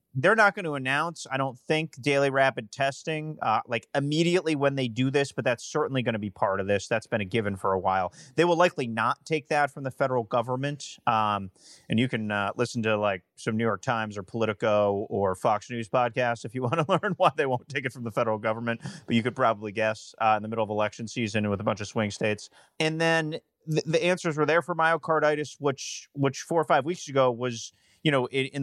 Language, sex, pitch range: English, male, 115-155 Hz